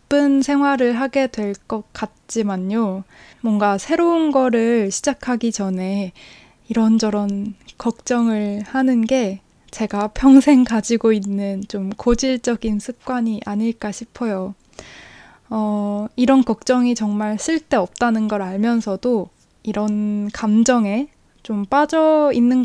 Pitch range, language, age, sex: 210-255 Hz, Korean, 20-39, female